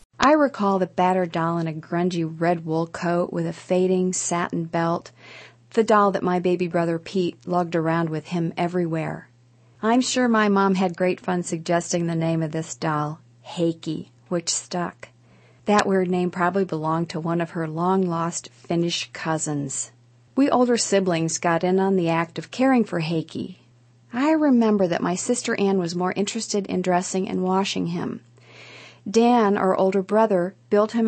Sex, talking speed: female, 170 wpm